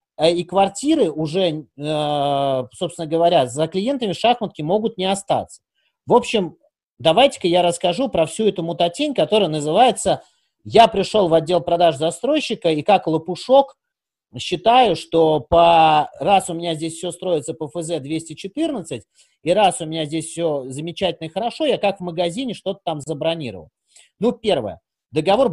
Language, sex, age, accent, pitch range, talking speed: Russian, male, 30-49, native, 160-210 Hz, 145 wpm